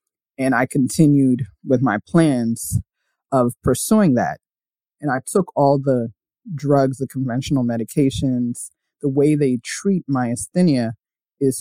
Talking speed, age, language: 125 wpm, 30-49, English